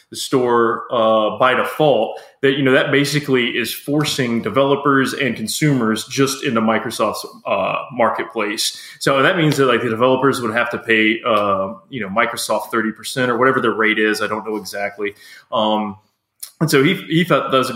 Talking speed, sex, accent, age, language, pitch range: 185 wpm, male, American, 20-39, English, 110-135 Hz